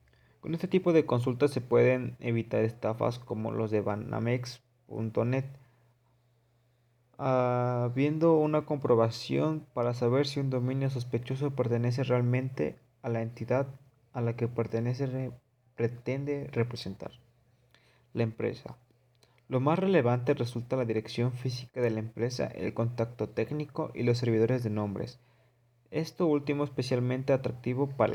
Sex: male